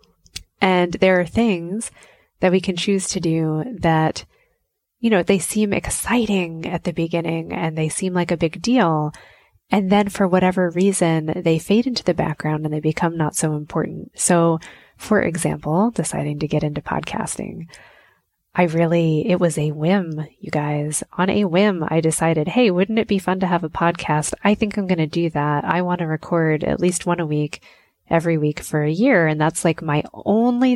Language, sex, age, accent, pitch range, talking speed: English, female, 20-39, American, 155-190 Hz, 190 wpm